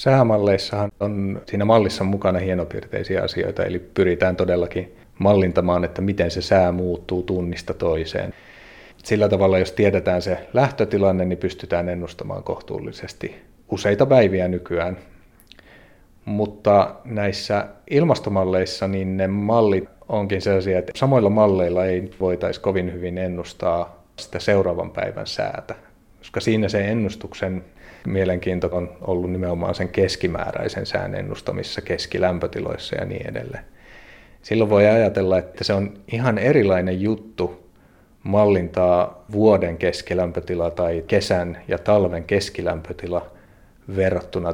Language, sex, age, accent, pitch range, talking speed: Finnish, male, 30-49, native, 90-100 Hz, 115 wpm